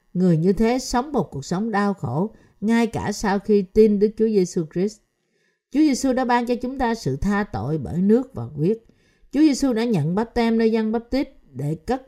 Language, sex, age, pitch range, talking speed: Vietnamese, female, 50-69, 155-225 Hz, 220 wpm